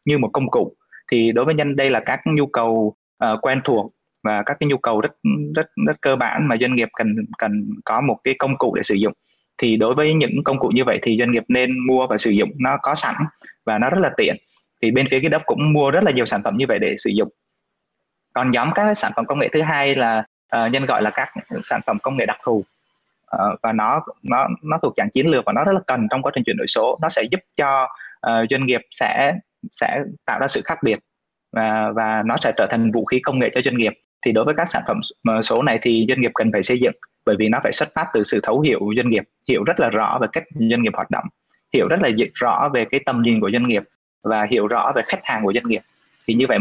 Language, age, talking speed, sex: Vietnamese, 20-39, 265 wpm, male